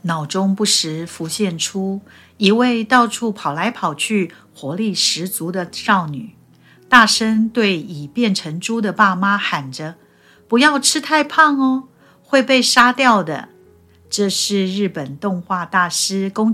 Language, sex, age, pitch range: Chinese, female, 50-69, 155-210 Hz